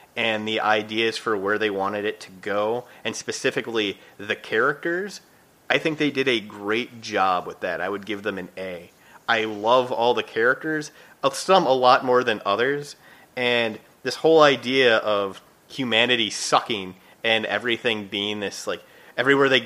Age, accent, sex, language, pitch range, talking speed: 30-49, American, male, English, 110-145 Hz, 170 wpm